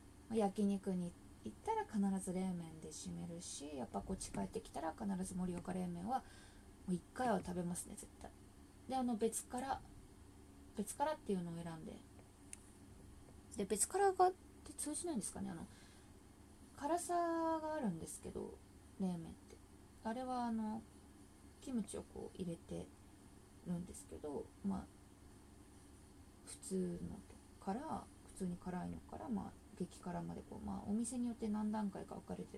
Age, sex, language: 20-39, female, Japanese